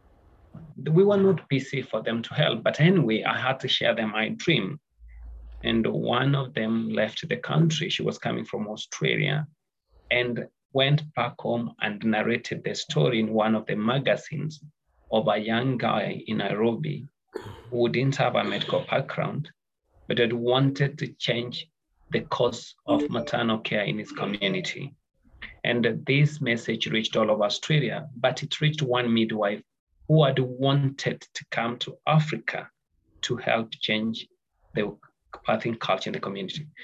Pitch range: 115-150 Hz